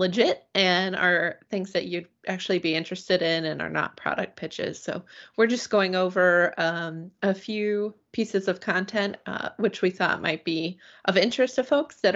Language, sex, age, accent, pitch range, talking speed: English, female, 20-39, American, 170-205 Hz, 185 wpm